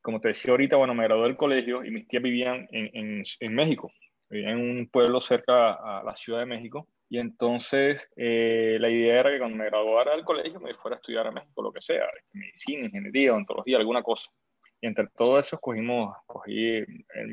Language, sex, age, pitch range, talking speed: Spanish, male, 20-39, 110-125 Hz, 210 wpm